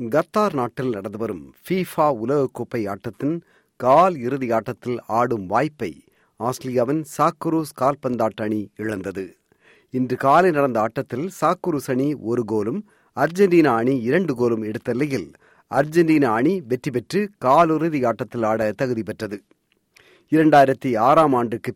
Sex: male